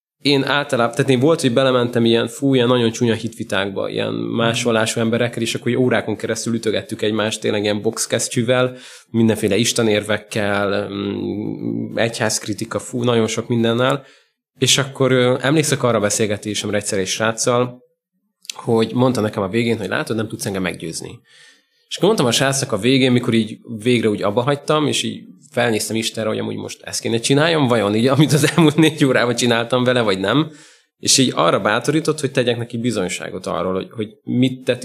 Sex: male